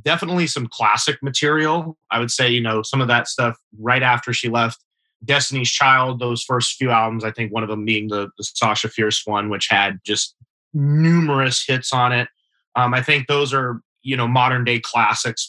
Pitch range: 115-140 Hz